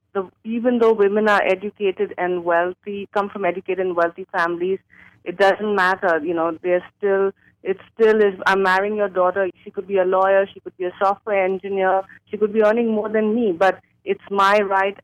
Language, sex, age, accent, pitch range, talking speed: English, female, 30-49, Indian, 180-205 Hz, 200 wpm